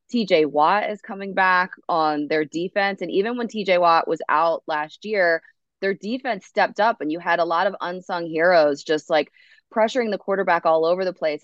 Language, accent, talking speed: English, American, 200 wpm